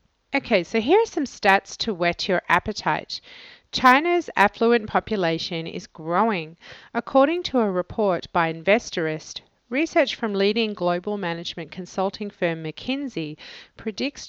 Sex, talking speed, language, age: female, 125 wpm, English, 40-59